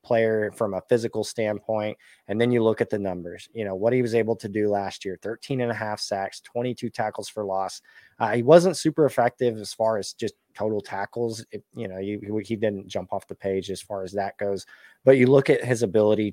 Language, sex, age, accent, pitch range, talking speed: English, male, 20-39, American, 105-125 Hz, 225 wpm